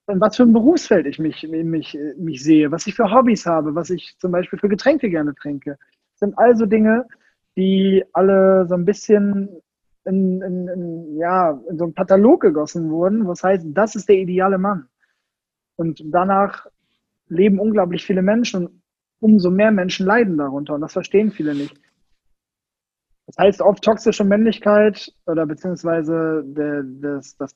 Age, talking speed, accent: 20-39, 160 wpm, German